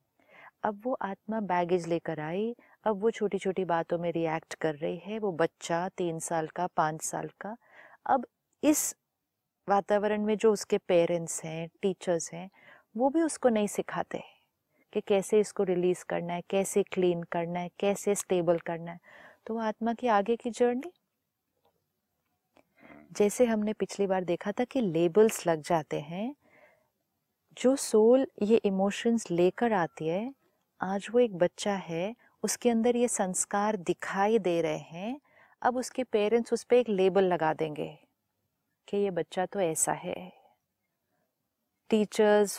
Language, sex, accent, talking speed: Hindi, female, native, 150 wpm